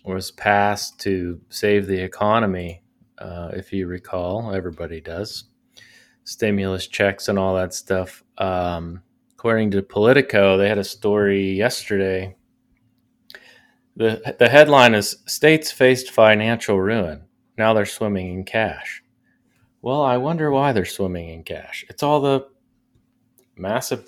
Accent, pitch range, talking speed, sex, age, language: American, 95-110 Hz, 130 wpm, male, 30-49, English